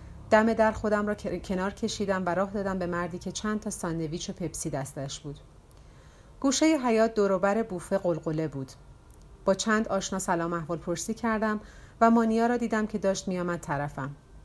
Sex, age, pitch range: female, 40-59, 165-215 Hz